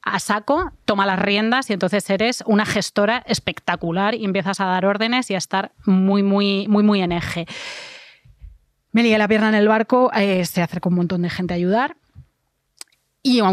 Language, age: Spanish, 20-39